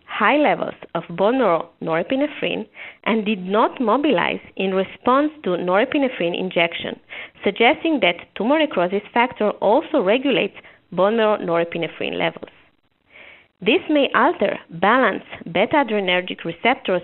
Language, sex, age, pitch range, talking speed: English, female, 30-49, 180-265 Hz, 110 wpm